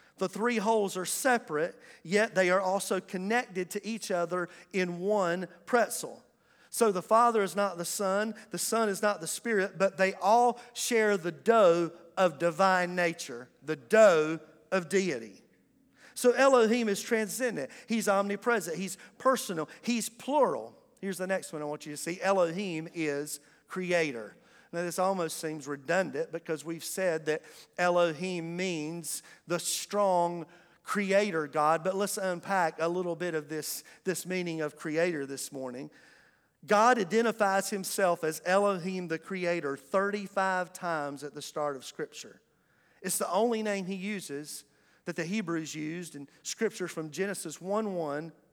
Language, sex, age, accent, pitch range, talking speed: English, male, 40-59, American, 165-205 Hz, 150 wpm